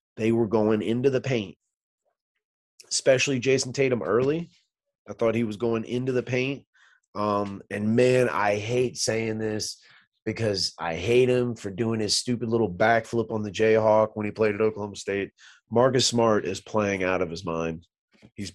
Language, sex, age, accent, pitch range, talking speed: English, male, 30-49, American, 100-130 Hz, 170 wpm